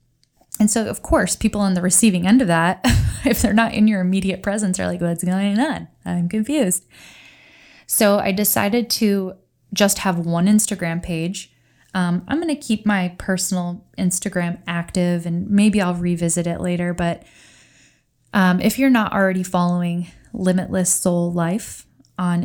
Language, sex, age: English, female, 10-29